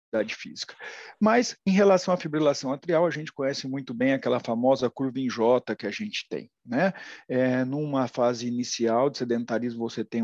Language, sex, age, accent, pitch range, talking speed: English, male, 40-59, Brazilian, 115-135 Hz, 175 wpm